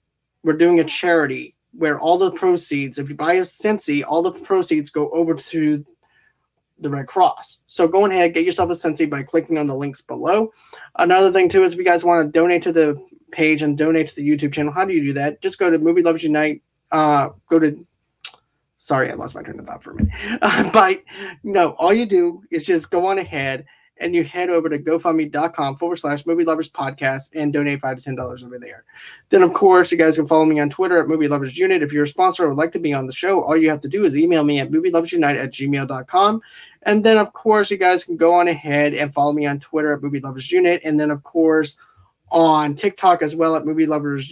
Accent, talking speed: American, 230 wpm